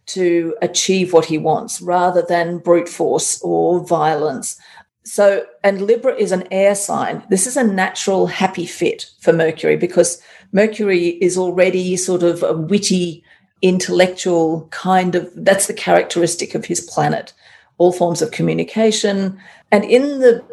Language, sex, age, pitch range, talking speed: English, female, 50-69, 175-205 Hz, 145 wpm